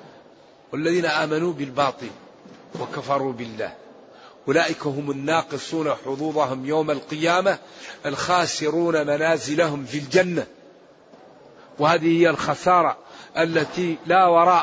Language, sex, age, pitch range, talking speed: Arabic, male, 50-69, 155-190 Hz, 85 wpm